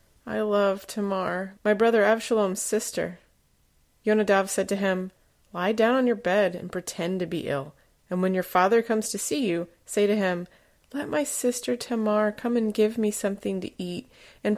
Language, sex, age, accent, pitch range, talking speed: English, female, 30-49, American, 180-215 Hz, 180 wpm